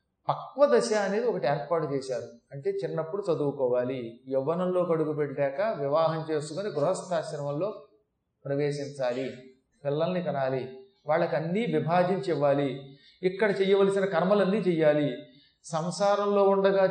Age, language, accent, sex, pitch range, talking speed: 30-49, Telugu, native, male, 150-195 Hz, 95 wpm